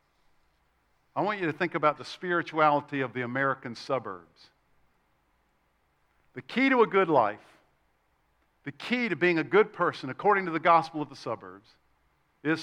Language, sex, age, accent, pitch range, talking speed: English, male, 50-69, American, 145-205 Hz, 155 wpm